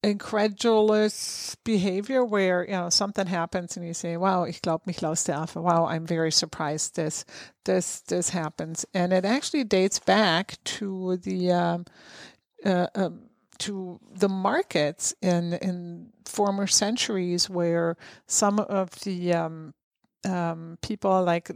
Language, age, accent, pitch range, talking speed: English, 50-69, American, 170-200 Hz, 130 wpm